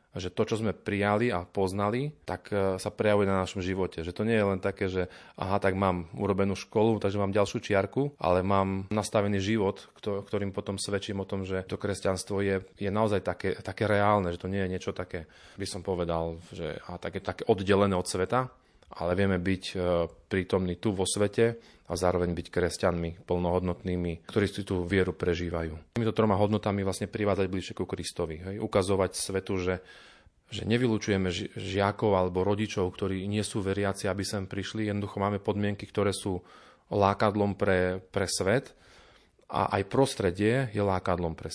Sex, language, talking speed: male, Slovak, 175 wpm